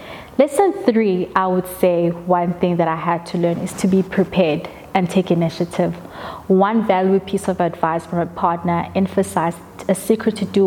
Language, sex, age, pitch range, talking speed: English, female, 20-39, 175-200 Hz, 180 wpm